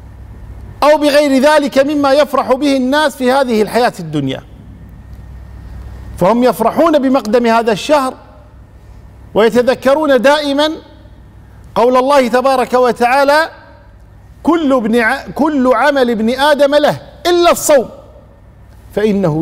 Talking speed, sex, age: 100 wpm, male, 50-69